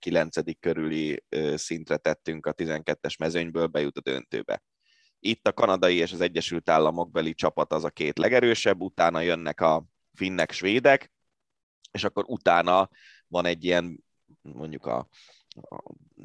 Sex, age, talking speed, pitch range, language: male, 30-49, 135 wpm, 80-90 Hz, Hungarian